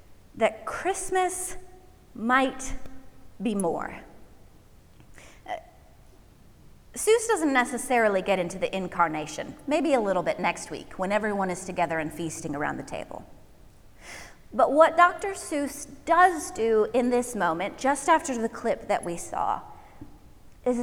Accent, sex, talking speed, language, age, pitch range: American, female, 130 wpm, English, 30-49, 215-310 Hz